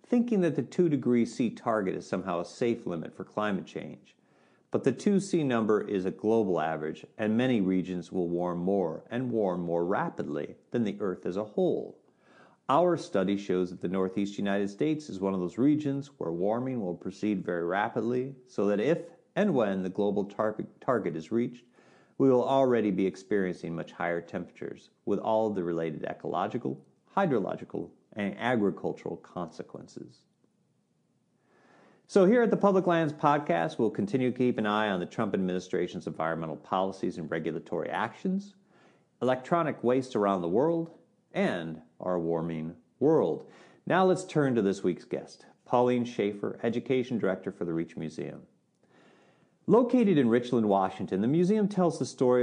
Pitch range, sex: 95-155 Hz, male